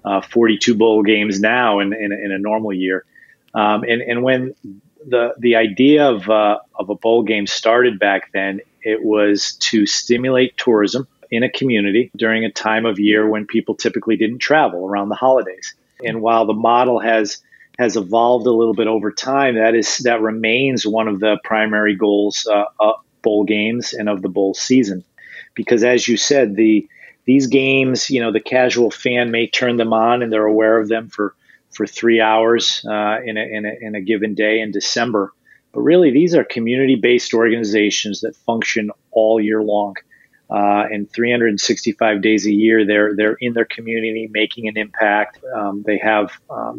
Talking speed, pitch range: 185 wpm, 105-120 Hz